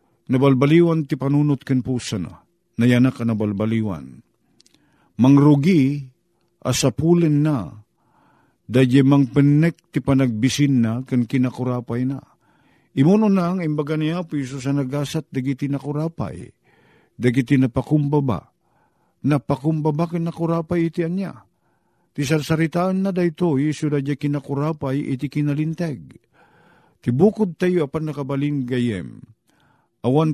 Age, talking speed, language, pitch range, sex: 50-69, 115 wpm, Filipino, 115-150 Hz, male